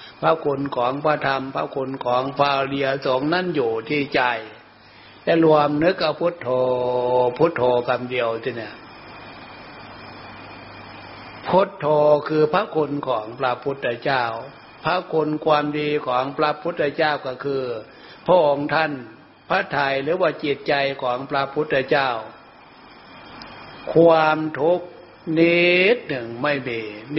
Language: Thai